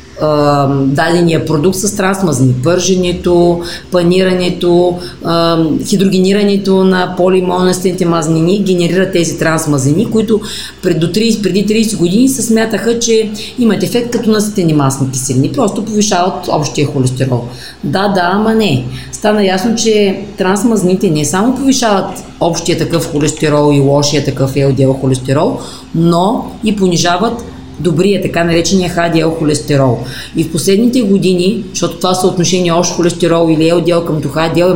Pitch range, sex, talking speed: 160-195 Hz, female, 130 wpm